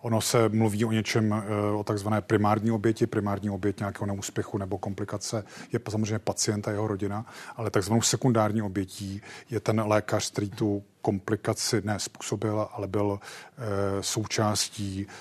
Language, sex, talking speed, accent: Czech, male, 140 wpm, native